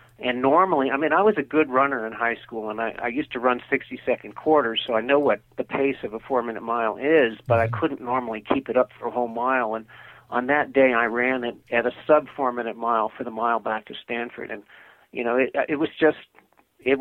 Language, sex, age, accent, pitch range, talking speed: English, male, 50-69, American, 115-135 Hz, 235 wpm